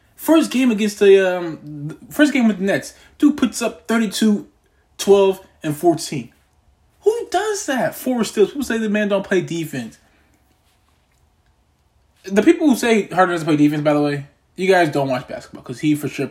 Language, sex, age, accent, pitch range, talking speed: English, male, 20-39, American, 150-225 Hz, 185 wpm